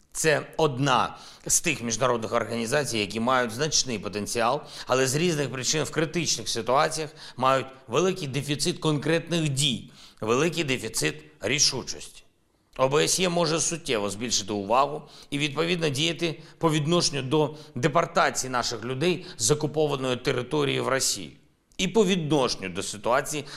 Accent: native